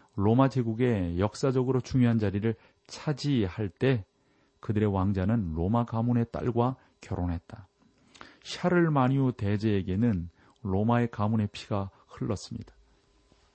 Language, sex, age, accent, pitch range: Korean, male, 40-59, native, 100-125 Hz